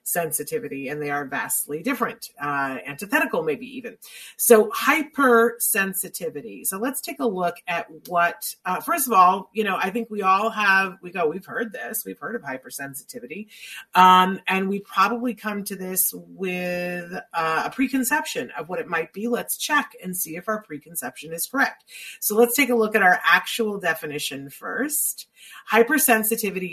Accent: American